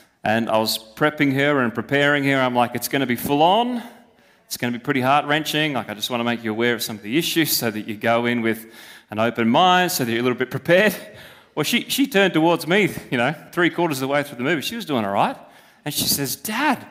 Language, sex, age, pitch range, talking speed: English, male, 30-49, 140-205 Hz, 265 wpm